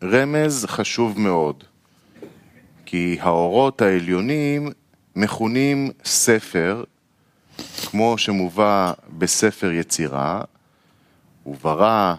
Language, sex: Hebrew, male